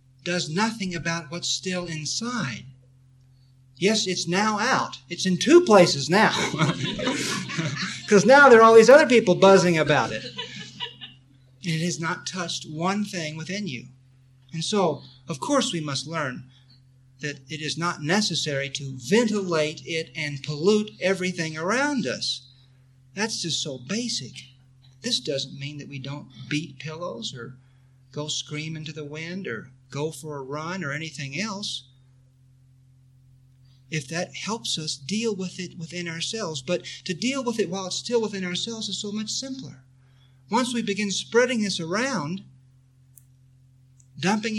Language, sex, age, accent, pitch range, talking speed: English, male, 50-69, American, 130-195 Hz, 150 wpm